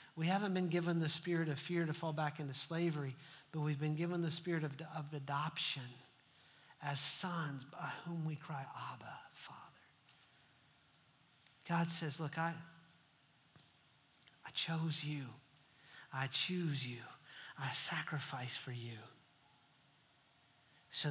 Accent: American